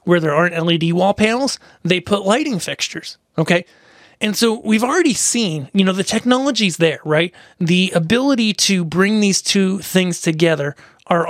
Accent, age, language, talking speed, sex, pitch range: American, 30-49, English, 165 wpm, male, 165-215 Hz